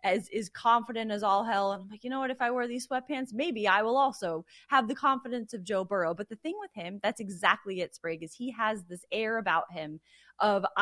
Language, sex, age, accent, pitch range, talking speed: English, female, 20-39, American, 195-260 Hz, 240 wpm